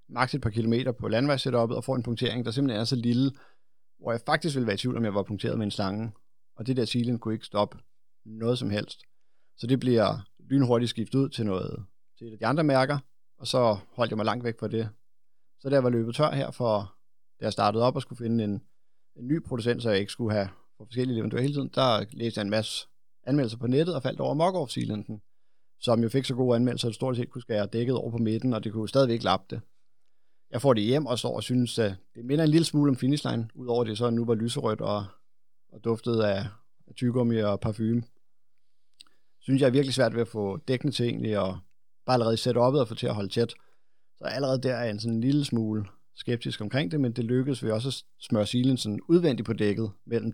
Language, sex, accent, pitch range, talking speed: Danish, male, native, 110-130 Hz, 245 wpm